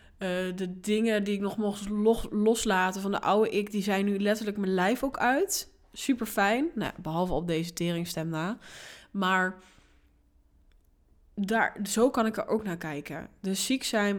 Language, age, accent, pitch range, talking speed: Dutch, 20-39, Dutch, 175-205 Hz, 160 wpm